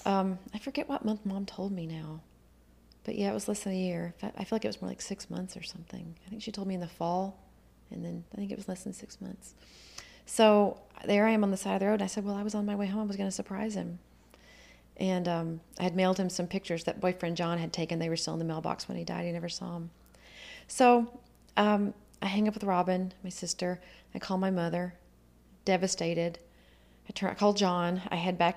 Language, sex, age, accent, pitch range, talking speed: English, female, 30-49, American, 165-205 Hz, 245 wpm